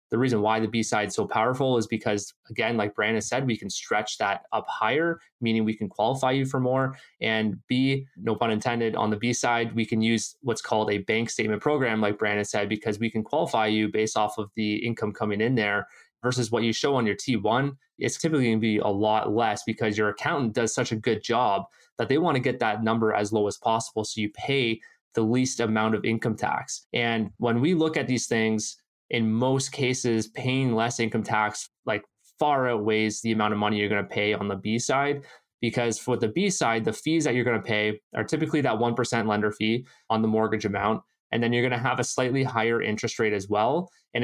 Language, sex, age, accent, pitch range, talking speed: English, male, 20-39, American, 110-125 Hz, 225 wpm